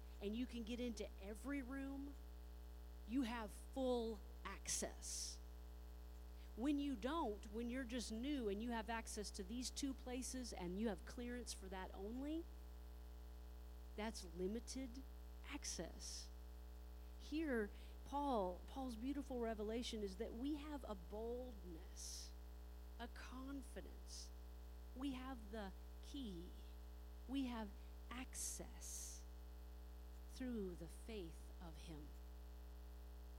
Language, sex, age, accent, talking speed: English, female, 40-59, American, 110 wpm